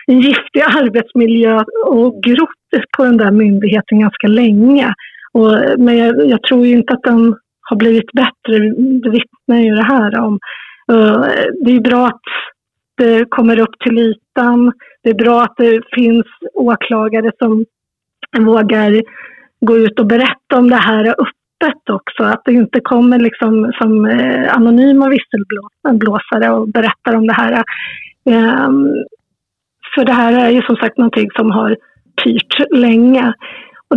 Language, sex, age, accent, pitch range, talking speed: English, female, 30-49, Swedish, 220-255 Hz, 145 wpm